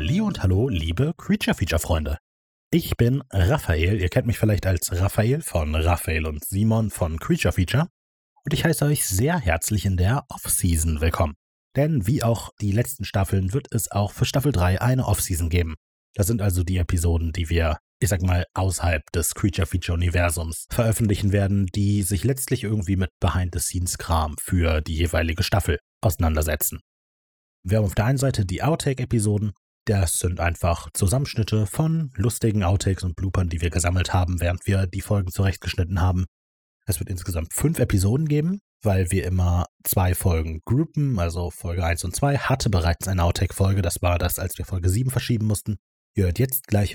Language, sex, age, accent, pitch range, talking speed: German, male, 30-49, German, 85-110 Hz, 175 wpm